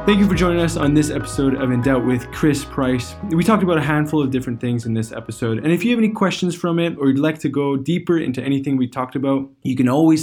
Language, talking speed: English, 275 wpm